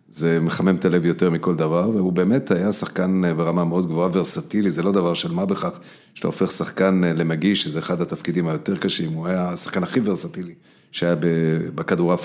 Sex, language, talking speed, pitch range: male, Hebrew, 180 wpm, 85-100 Hz